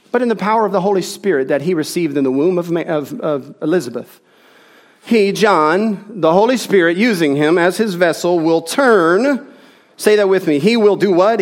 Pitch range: 160-230 Hz